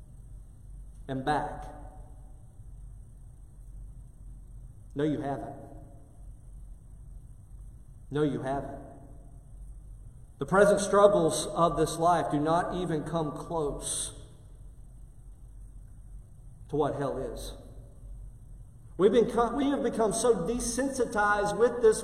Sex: male